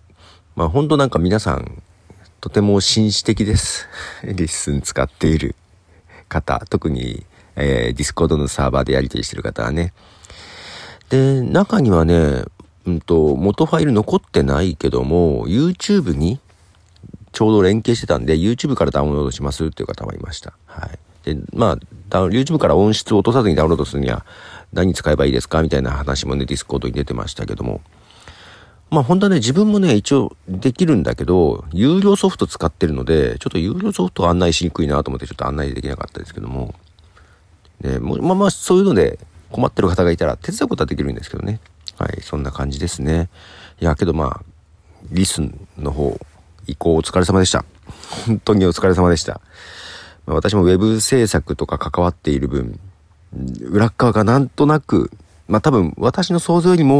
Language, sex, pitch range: Japanese, male, 75-105 Hz